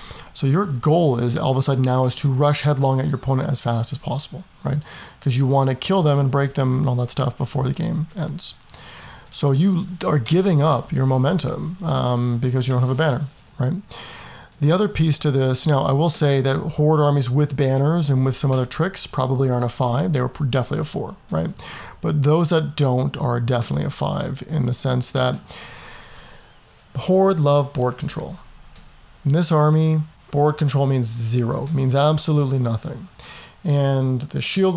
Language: English